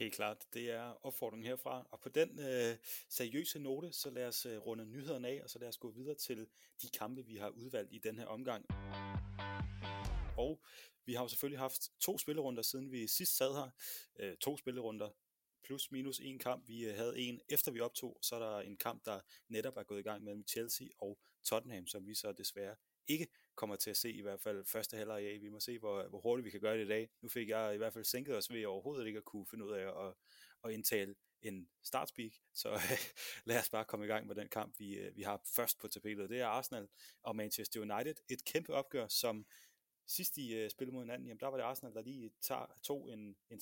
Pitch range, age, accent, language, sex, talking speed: 105-130 Hz, 30-49, native, Danish, male, 230 wpm